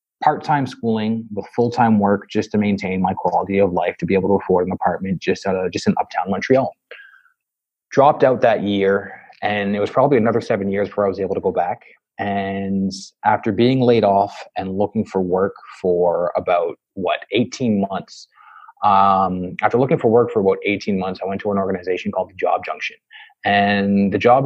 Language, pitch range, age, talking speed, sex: English, 95-120 Hz, 20-39, 190 wpm, male